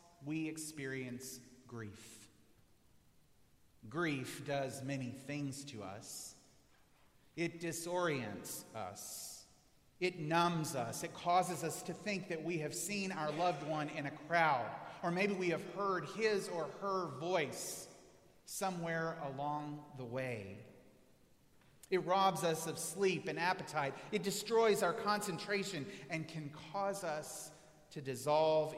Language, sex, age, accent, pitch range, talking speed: English, male, 30-49, American, 125-170 Hz, 125 wpm